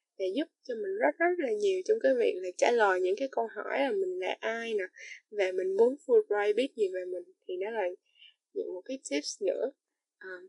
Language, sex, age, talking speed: Vietnamese, female, 10-29, 225 wpm